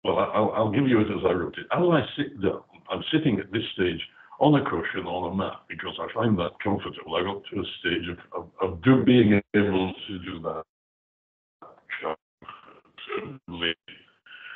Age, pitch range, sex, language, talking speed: 60-79, 85-120 Hz, male, English, 175 wpm